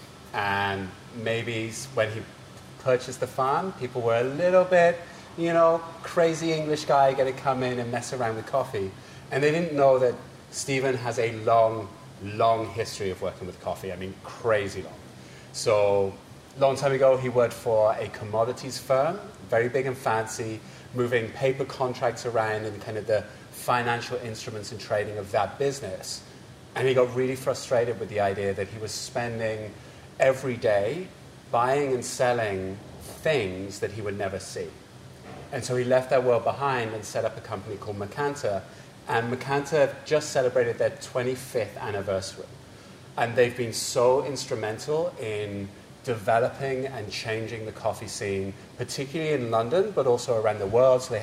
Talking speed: 165 wpm